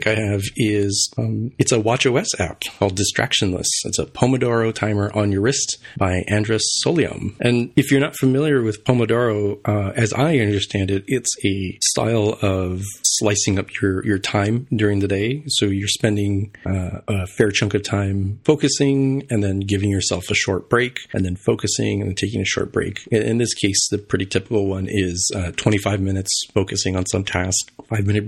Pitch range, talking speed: 100-115 Hz, 185 wpm